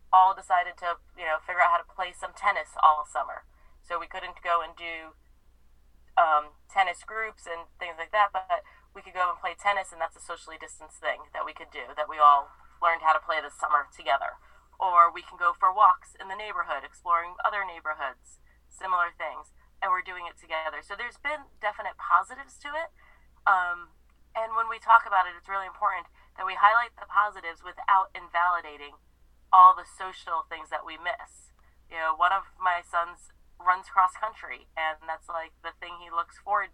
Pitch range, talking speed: 160-185 Hz, 200 wpm